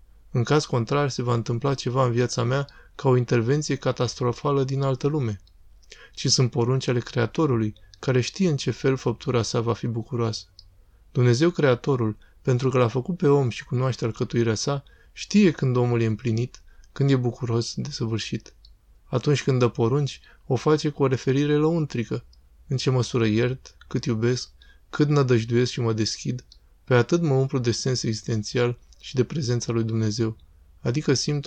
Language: Romanian